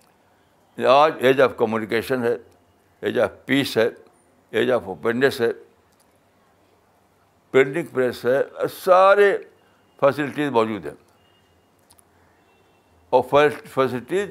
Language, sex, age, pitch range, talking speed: Urdu, male, 60-79, 100-145 Hz, 90 wpm